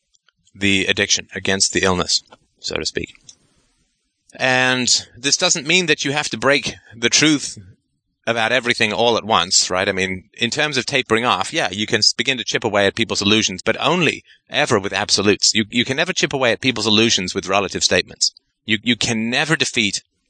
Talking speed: 190 wpm